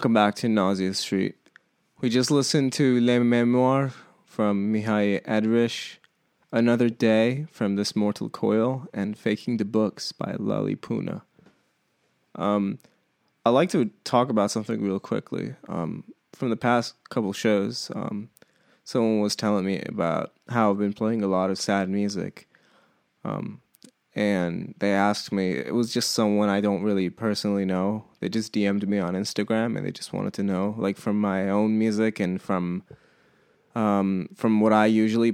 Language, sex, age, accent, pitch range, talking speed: English, male, 20-39, American, 100-115 Hz, 160 wpm